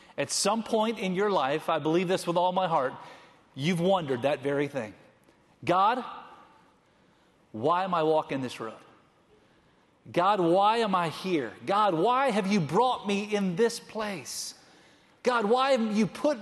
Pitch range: 180-235 Hz